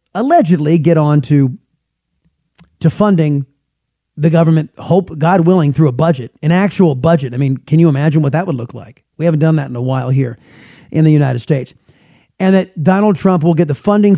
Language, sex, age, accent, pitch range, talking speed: English, male, 30-49, American, 145-175 Hz, 200 wpm